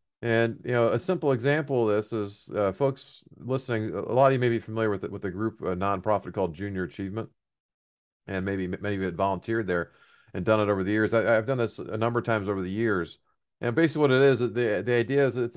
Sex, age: male, 40-59